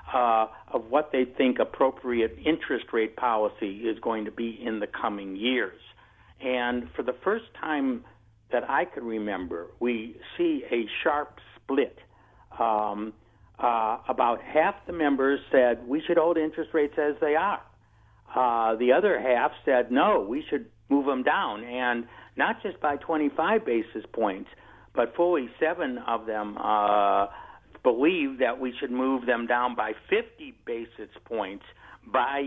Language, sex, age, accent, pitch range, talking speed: English, male, 60-79, American, 115-145 Hz, 155 wpm